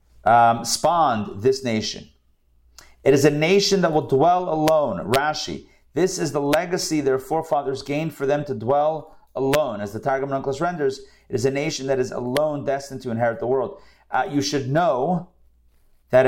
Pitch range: 125-150 Hz